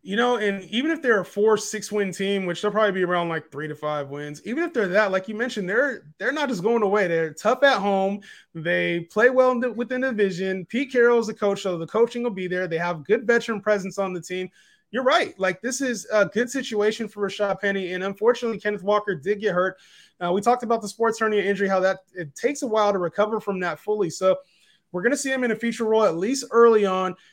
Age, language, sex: 20-39, English, male